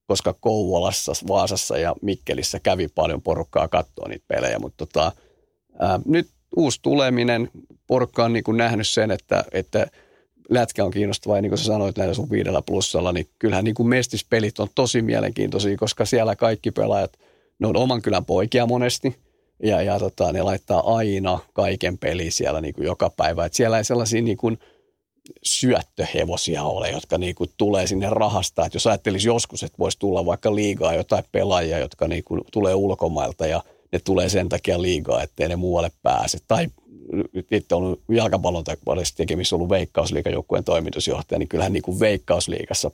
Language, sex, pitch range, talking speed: Finnish, male, 95-115 Hz, 160 wpm